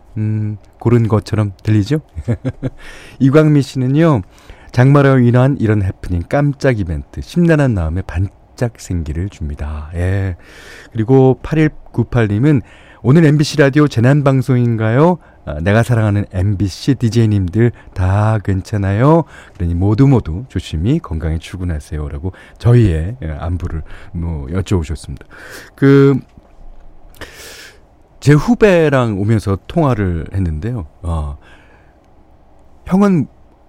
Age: 40-59